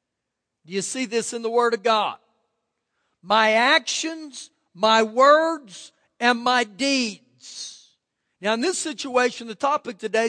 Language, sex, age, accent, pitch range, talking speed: English, male, 50-69, American, 210-280 Hz, 135 wpm